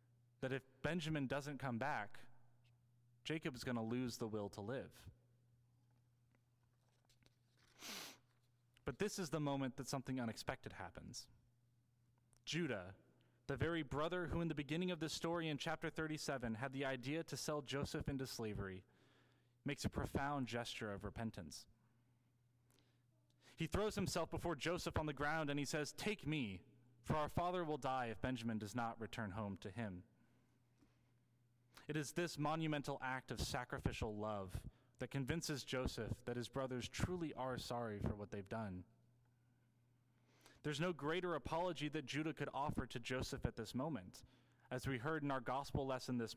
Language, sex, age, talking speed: English, male, 30-49, 155 wpm